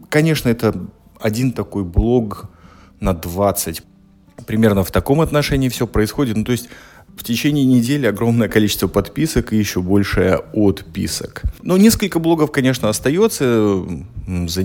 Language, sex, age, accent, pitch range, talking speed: Russian, male, 30-49, native, 95-125 Hz, 130 wpm